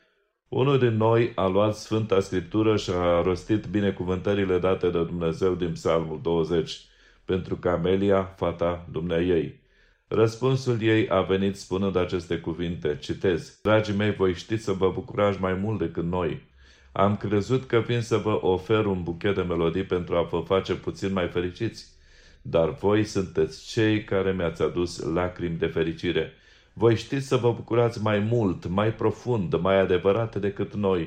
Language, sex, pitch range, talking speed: Romanian, male, 90-110 Hz, 160 wpm